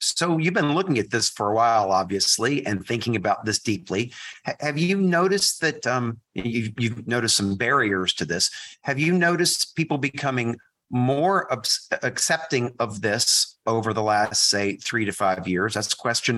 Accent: American